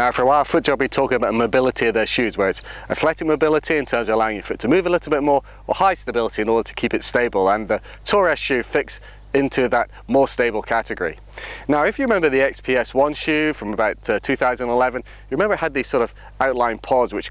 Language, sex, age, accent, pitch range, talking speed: English, male, 30-49, British, 115-140 Hz, 245 wpm